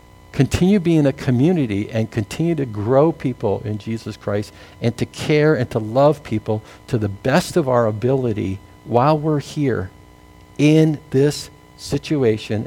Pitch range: 110-145 Hz